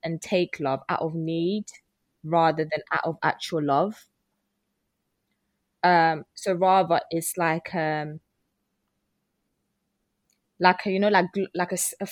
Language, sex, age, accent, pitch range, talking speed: English, female, 20-39, British, 165-190 Hz, 130 wpm